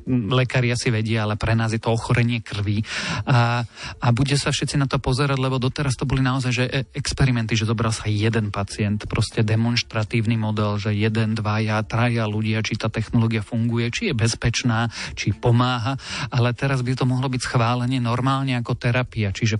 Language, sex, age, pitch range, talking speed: Slovak, male, 40-59, 110-125 Hz, 185 wpm